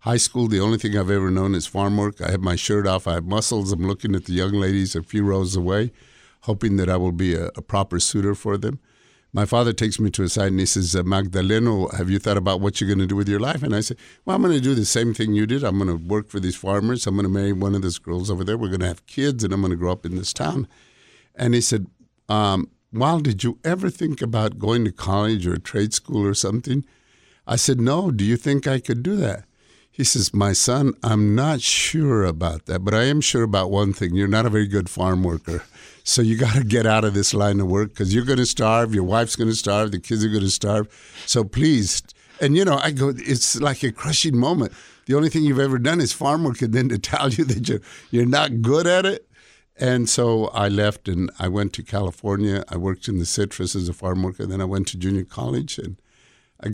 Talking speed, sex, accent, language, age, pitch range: 260 wpm, male, American, English, 50-69, 95-120 Hz